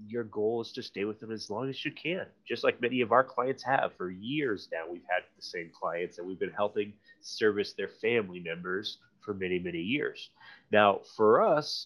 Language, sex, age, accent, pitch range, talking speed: English, male, 30-49, American, 105-125 Hz, 215 wpm